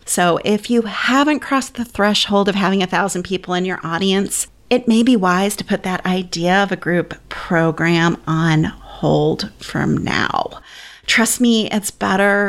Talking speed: 170 wpm